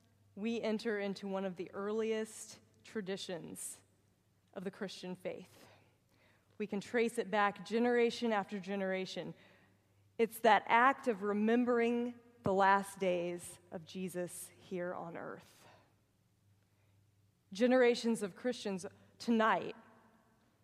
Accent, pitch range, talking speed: American, 165-220 Hz, 110 wpm